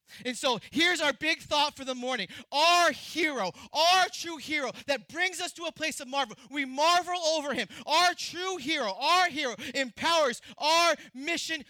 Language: English